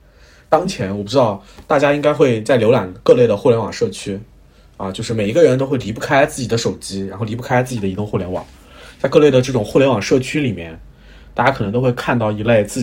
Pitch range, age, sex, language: 95-125 Hz, 20-39, male, Chinese